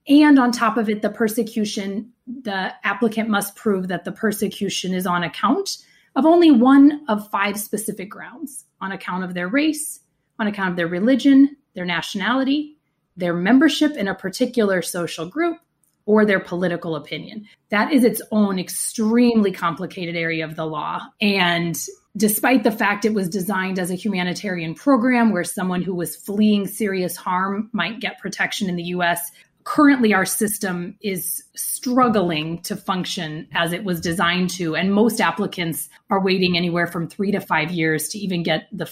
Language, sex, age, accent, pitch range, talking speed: English, female, 30-49, American, 175-220 Hz, 165 wpm